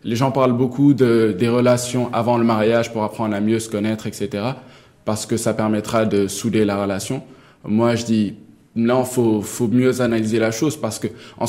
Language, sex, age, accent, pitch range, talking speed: French, male, 20-39, French, 115-130 Hz, 200 wpm